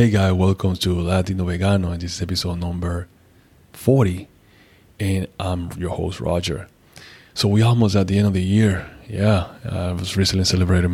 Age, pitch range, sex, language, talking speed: 20-39, 90-100 Hz, male, English, 170 wpm